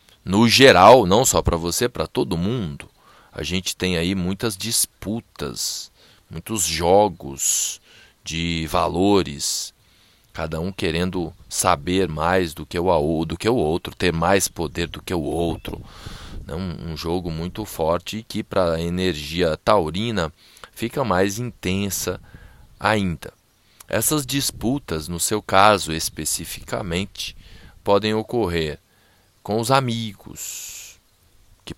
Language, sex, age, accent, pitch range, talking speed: Portuguese, male, 20-39, Brazilian, 85-105 Hz, 115 wpm